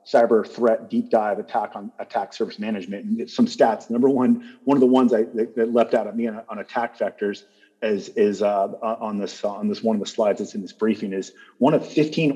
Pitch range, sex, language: 110-130 Hz, male, English